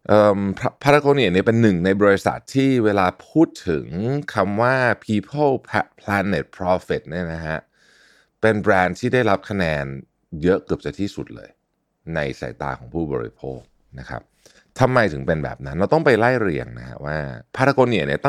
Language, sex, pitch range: Thai, male, 75-110 Hz